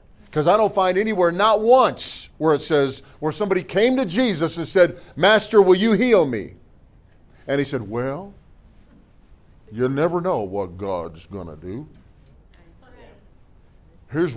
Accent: American